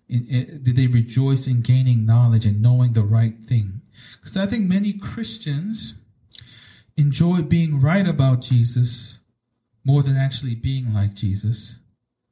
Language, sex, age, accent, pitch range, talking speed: English, male, 40-59, American, 115-135 Hz, 130 wpm